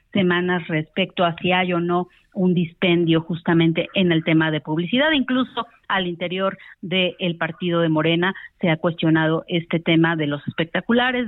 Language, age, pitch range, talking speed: Spanish, 40-59, 170-215 Hz, 160 wpm